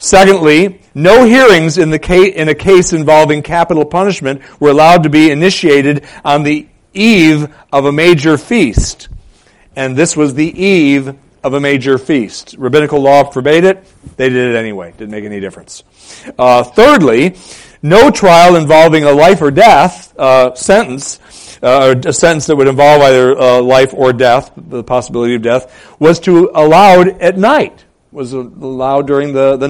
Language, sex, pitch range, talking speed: English, male, 125-170 Hz, 160 wpm